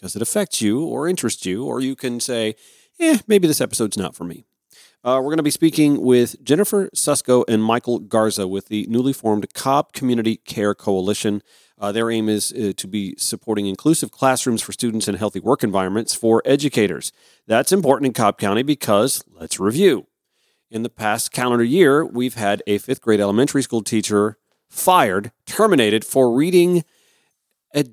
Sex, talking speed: male, 175 wpm